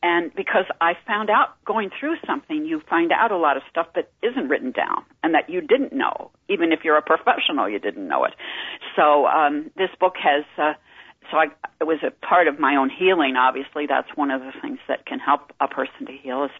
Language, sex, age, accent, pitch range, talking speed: English, female, 50-69, American, 140-215 Hz, 230 wpm